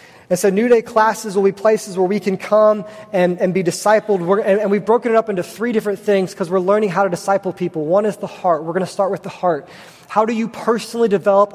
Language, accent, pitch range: English, American, 180-215 Hz